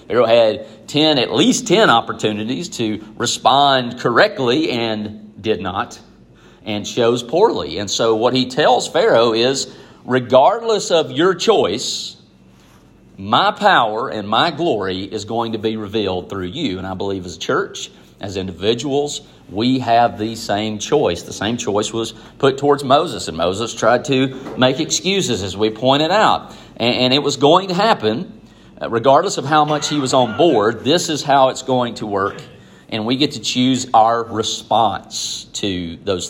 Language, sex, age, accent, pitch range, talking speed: English, male, 40-59, American, 105-135 Hz, 165 wpm